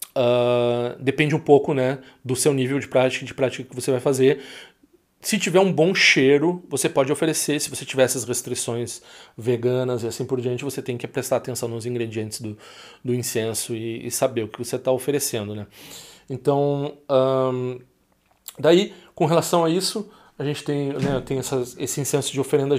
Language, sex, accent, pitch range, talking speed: Portuguese, male, Brazilian, 125-150 Hz, 175 wpm